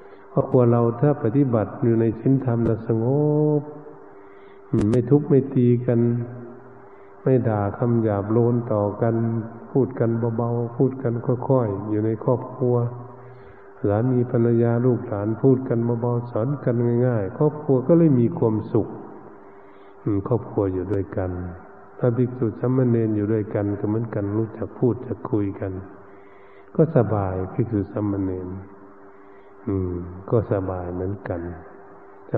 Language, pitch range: Thai, 100-120 Hz